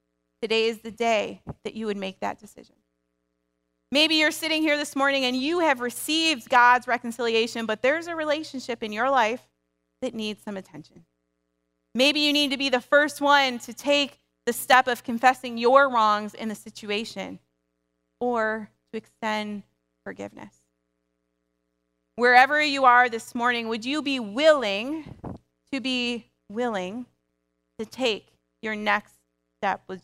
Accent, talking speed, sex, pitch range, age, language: American, 145 wpm, female, 160-250 Hz, 30-49, English